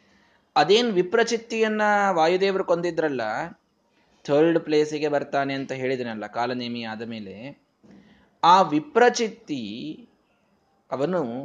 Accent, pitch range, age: native, 145-200 Hz, 20-39